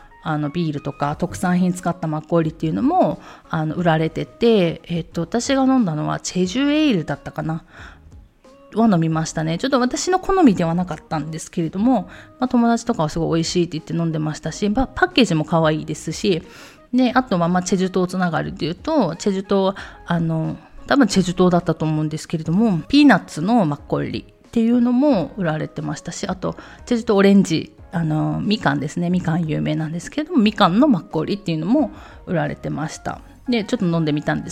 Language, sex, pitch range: Japanese, female, 160-230 Hz